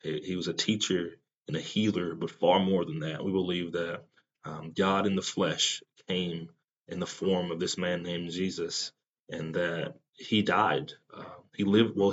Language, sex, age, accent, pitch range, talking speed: English, male, 30-49, American, 90-105 Hz, 185 wpm